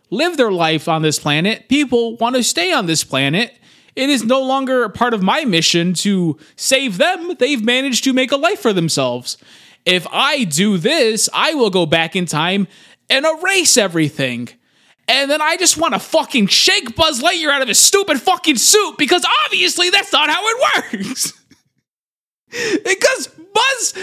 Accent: American